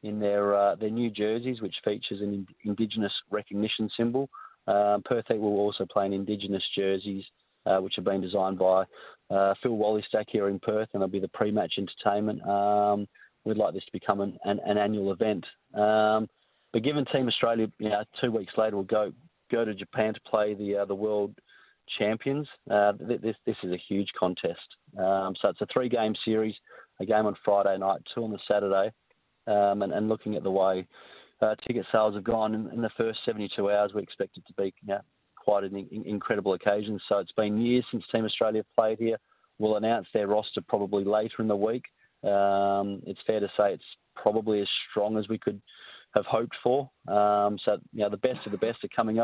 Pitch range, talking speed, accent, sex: 100-110 Hz, 205 wpm, Australian, male